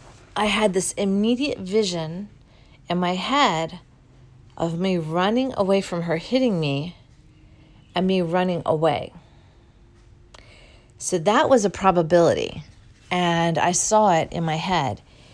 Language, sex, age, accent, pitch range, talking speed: English, female, 40-59, American, 150-205 Hz, 125 wpm